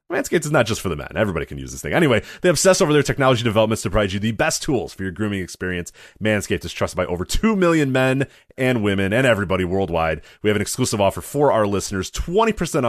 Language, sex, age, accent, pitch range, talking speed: English, male, 30-49, American, 85-115 Hz, 240 wpm